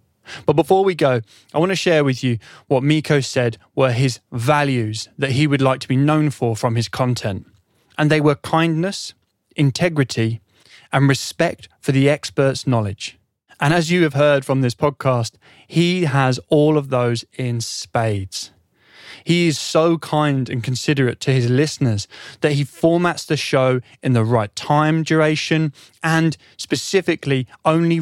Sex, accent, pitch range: male, British, 120-155 Hz